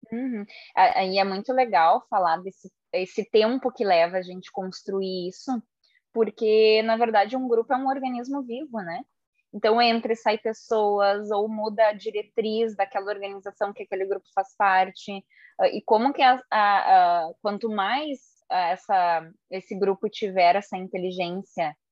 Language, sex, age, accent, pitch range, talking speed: Portuguese, female, 20-39, Brazilian, 185-230 Hz, 150 wpm